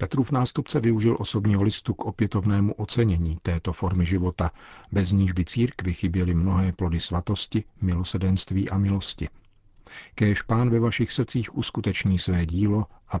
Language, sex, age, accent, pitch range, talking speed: Czech, male, 40-59, native, 90-105 Hz, 140 wpm